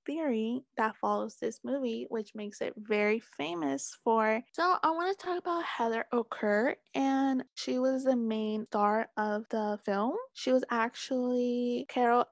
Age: 20-39